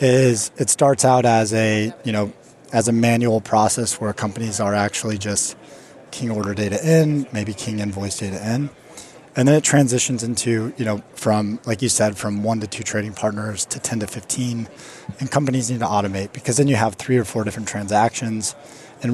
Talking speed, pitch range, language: 195 wpm, 105-125 Hz, English